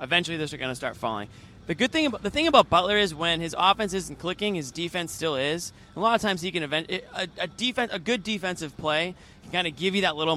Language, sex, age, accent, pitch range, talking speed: English, male, 20-39, American, 145-190 Hz, 270 wpm